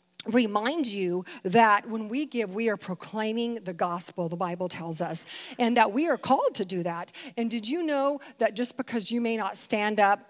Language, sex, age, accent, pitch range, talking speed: English, female, 40-59, American, 205-260 Hz, 205 wpm